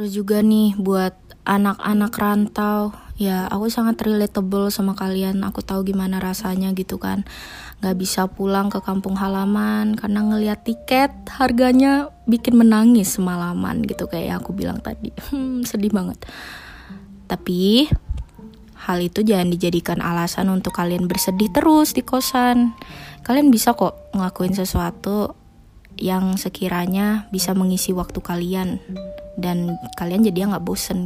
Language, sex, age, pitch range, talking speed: Indonesian, female, 20-39, 185-225 Hz, 130 wpm